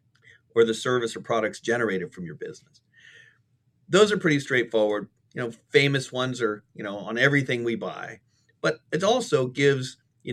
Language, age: English, 40-59